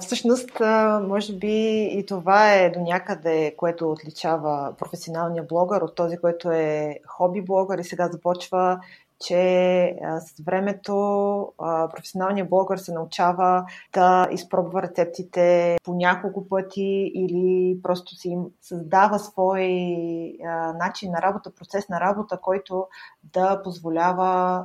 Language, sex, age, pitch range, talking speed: Bulgarian, female, 30-49, 170-195 Hz, 115 wpm